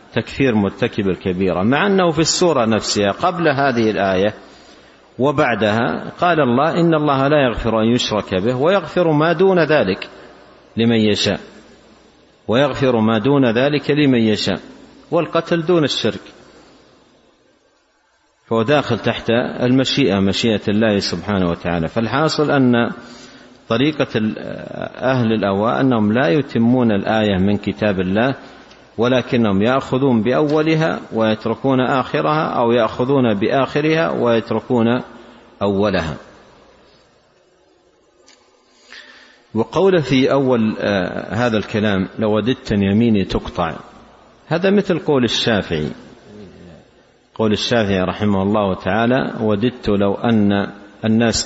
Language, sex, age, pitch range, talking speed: Arabic, male, 50-69, 105-135 Hz, 105 wpm